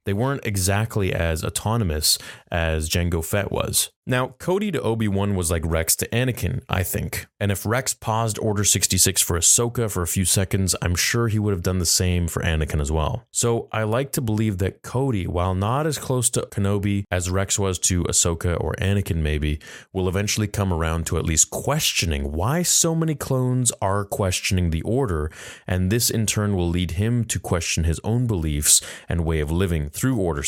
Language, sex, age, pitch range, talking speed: English, male, 30-49, 85-115 Hz, 195 wpm